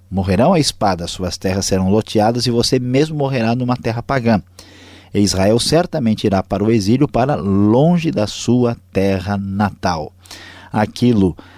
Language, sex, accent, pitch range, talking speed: Portuguese, male, Brazilian, 95-125 Hz, 145 wpm